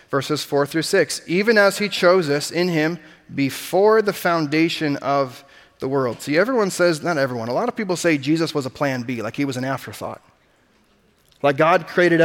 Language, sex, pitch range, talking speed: English, male, 135-175 Hz, 195 wpm